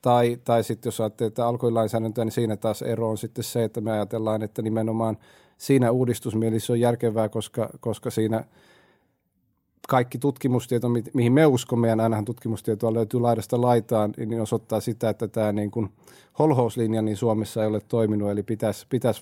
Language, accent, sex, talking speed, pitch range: Finnish, native, male, 160 wpm, 110-120 Hz